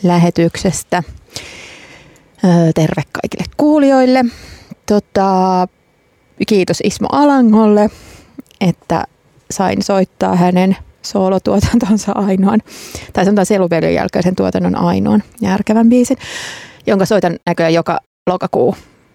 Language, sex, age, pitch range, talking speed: Finnish, female, 30-49, 175-210 Hz, 90 wpm